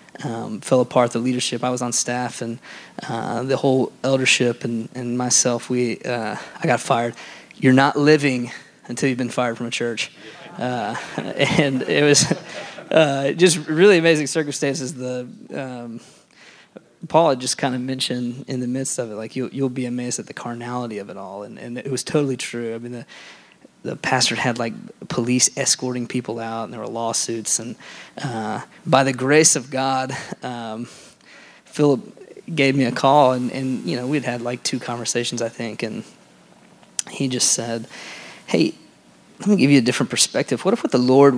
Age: 20-39